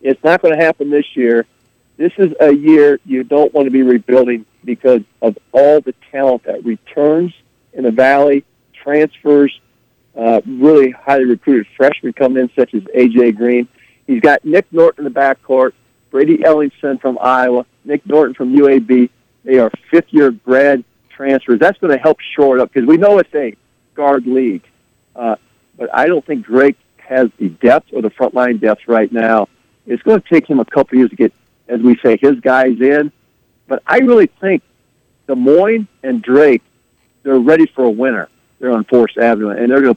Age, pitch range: 50-69, 120-140 Hz